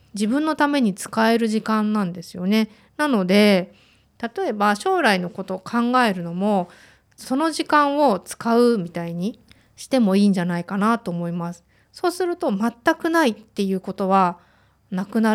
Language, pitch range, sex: Japanese, 190-255 Hz, female